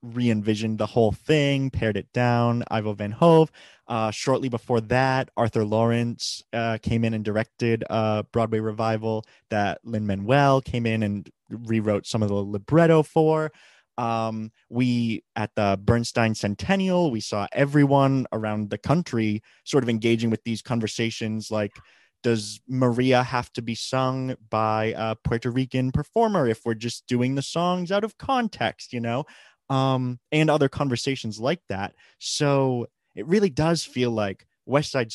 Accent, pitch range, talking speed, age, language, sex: American, 110-130 Hz, 155 wpm, 20-39, English, male